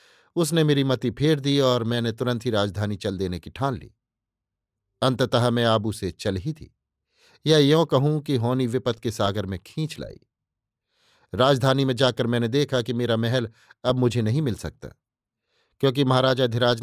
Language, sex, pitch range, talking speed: Hindi, male, 110-135 Hz, 175 wpm